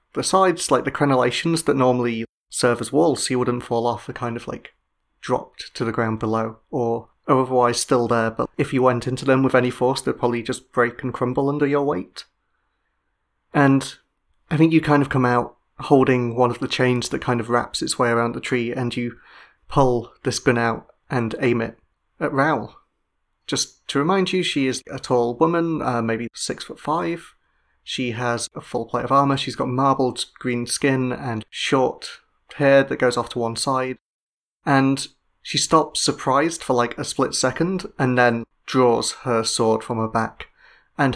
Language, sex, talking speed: English, male, 190 wpm